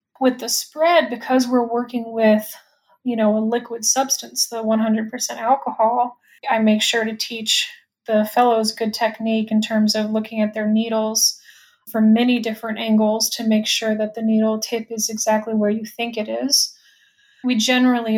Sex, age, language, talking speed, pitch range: female, 20-39, English, 170 wpm, 220-250 Hz